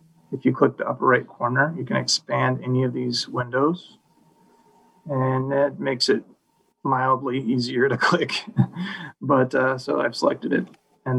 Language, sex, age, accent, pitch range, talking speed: English, male, 30-49, American, 125-185 Hz, 155 wpm